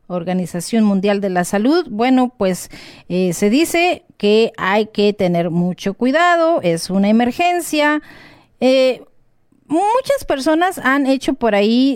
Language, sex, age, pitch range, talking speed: English, female, 40-59, 200-280 Hz, 130 wpm